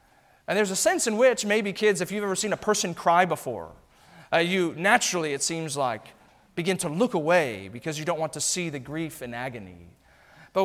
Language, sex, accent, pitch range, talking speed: English, male, American, 130-180 Hz, 210 wpm